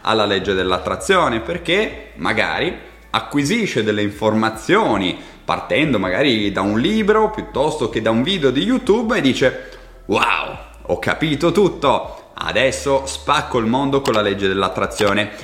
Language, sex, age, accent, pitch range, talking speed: Italian, male, 30-49, native, 105-155 Hz, 130 wpm